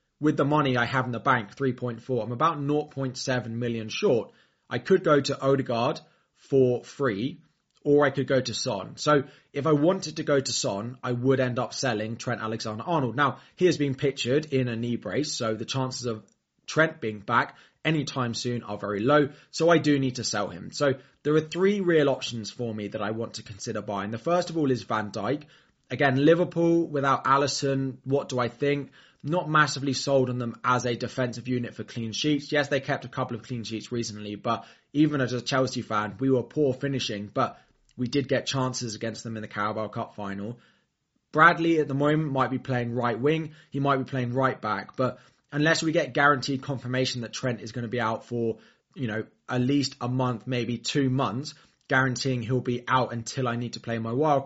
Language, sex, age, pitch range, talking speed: English, male, 20-39, 115-140 Hz, 210 wpm